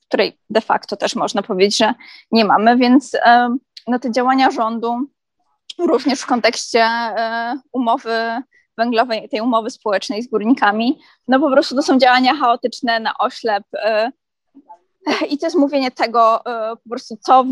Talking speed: 140 wpm